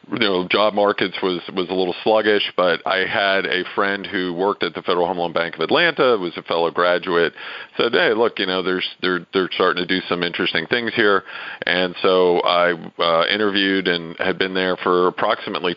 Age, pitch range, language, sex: 40-59, 85-95 Hz, English, male